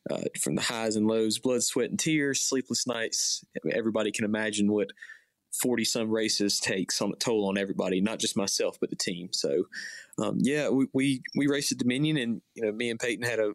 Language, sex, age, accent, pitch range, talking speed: English, male, 20-39, American, 110-125 Hz, 220 wpm